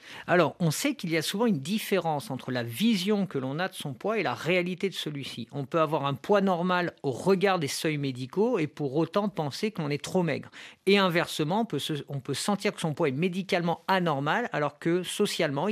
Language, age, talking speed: French, 50-69, 225 wpm